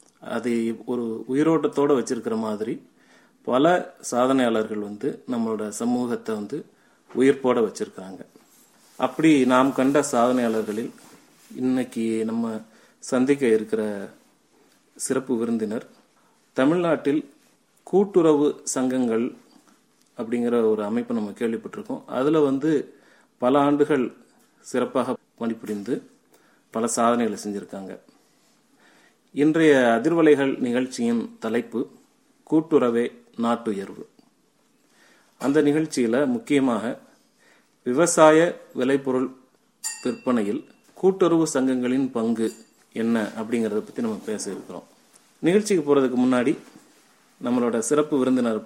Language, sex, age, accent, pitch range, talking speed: Tamil, male, 30-49, native, 115-145 Hz, 85 wpm